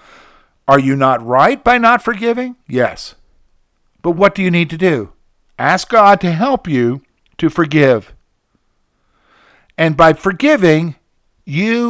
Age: 50-69